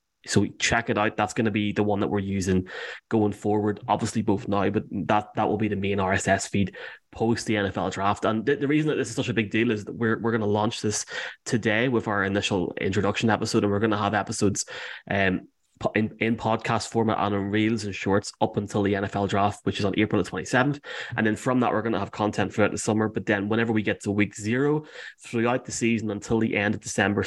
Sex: male